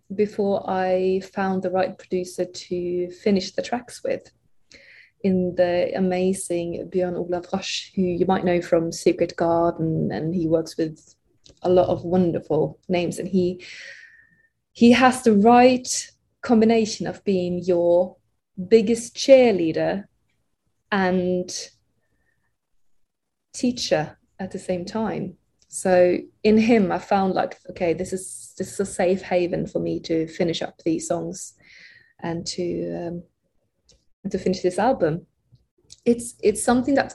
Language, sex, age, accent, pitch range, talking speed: English, female, 20-39, British, 175-210 Hz, 130 wpm